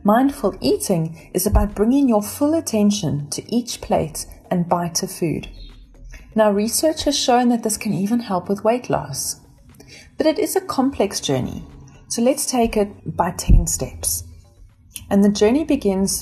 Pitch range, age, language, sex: 185-245 Hz, 30-49, English, female